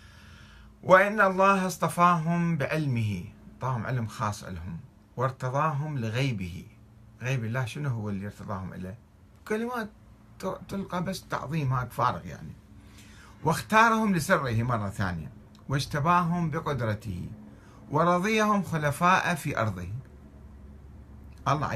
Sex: male